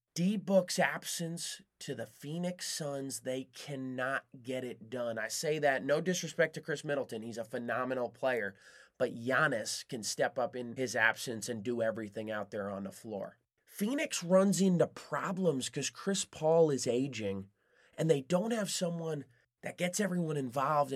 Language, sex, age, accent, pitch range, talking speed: English, male, 30-49, American, 130-175 Hz, 165 wpm